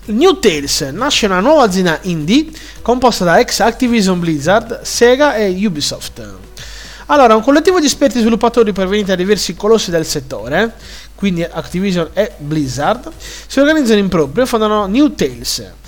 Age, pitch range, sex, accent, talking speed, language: 30-49, 155-235 Hz, male, native, 145 wpm, Italian